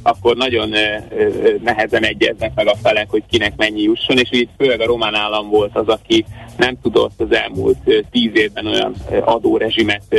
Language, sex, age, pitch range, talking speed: Hungarian, male, 30-49, 105-130 Hz, 165 wpm